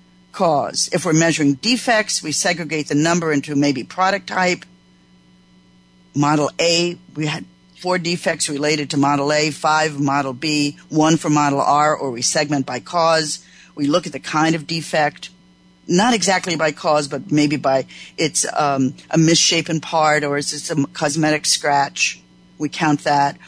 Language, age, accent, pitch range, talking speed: English, 50-69, American, 140-170 Hz, 160 wpm